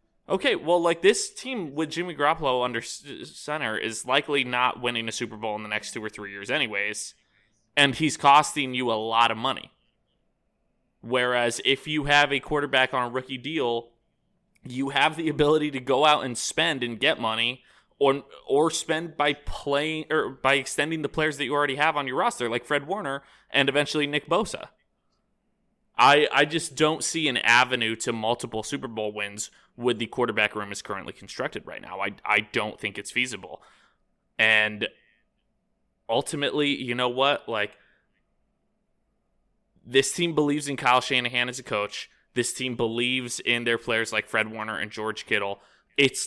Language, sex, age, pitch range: English, male, 20-39, 110-145 Hz